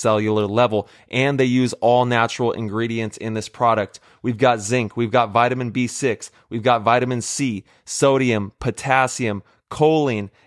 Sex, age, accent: male, 30-49, American